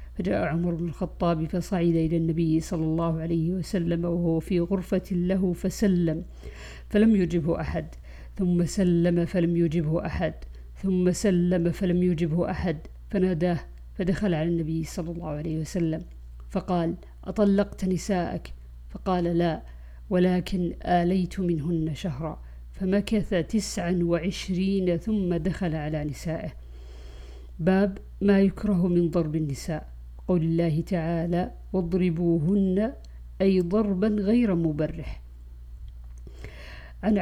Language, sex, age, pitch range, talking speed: Arabic, female, 50-69, 160-190 Hz, 110 wpm